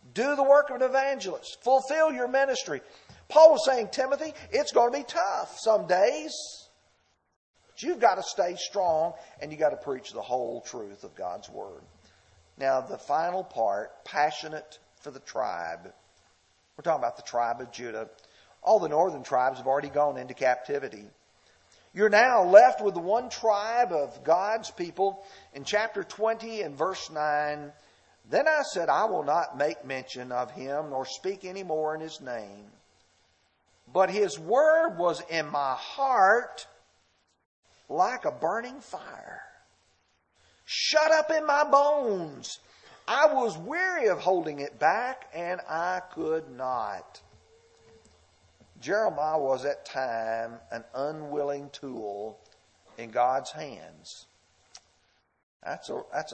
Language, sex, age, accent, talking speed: English, male, 50-69, American, 140 wpm